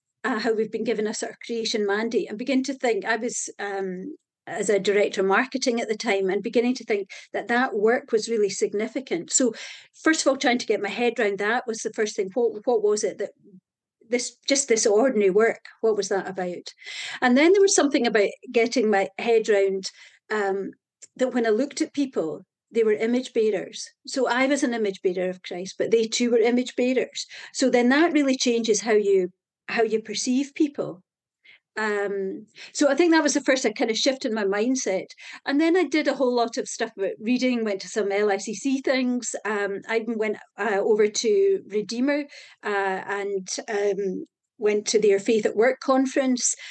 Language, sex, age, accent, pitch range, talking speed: English, female, 50-69, British, 210-265 Hz, 200 wpm